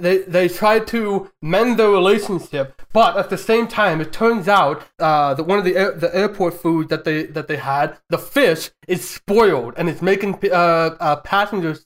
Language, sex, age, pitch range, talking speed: English, male, 20-39, 165-200 Hz, 195 wpm